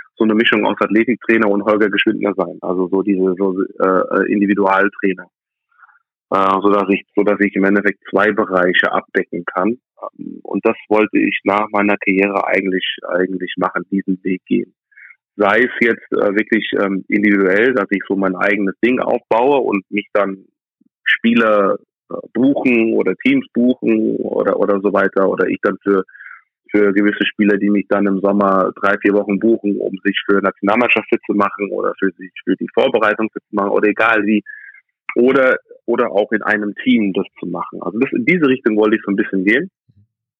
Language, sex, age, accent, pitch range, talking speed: German, male, 30-49, German, 95-115 Hz, 180 wpm